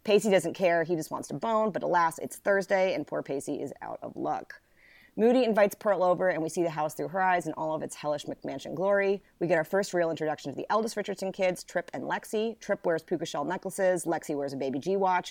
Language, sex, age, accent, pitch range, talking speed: English, female, 30-49, American, 155-200 Hz, 245 wpm